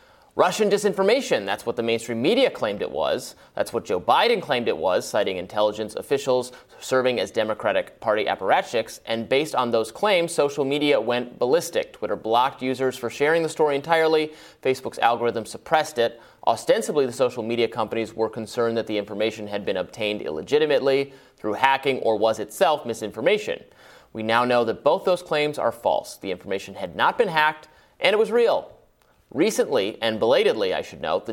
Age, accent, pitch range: 30-49, American, 115-165 Hz